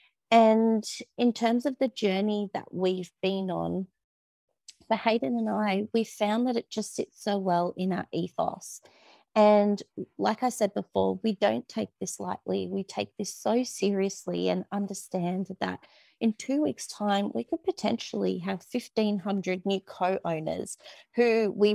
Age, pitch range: 40-59, 185-220 Hz